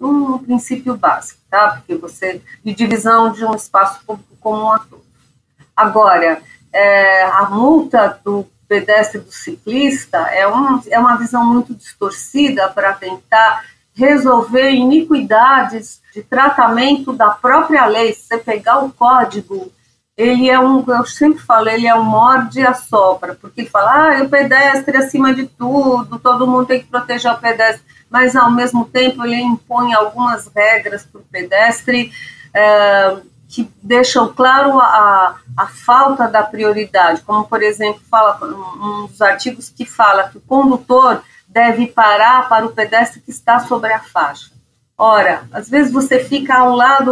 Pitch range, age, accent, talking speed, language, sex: 210-260 Hz, 40-59, Brazilian, 150 wpm, Portuguese, female